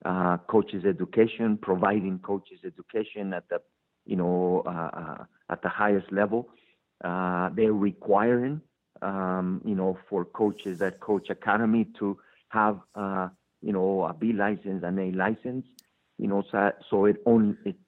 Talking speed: 150 wpm